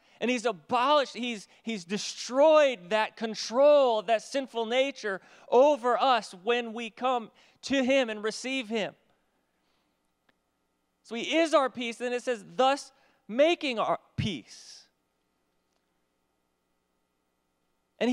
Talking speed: 115 wpm